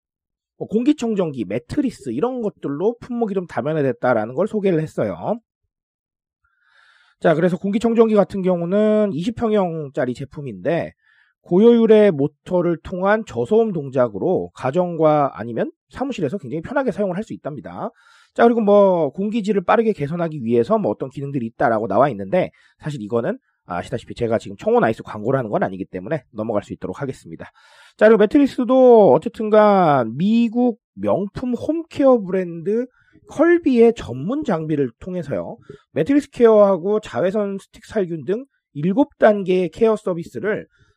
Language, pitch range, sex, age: Korean, 140-225 Hz, male, 30-49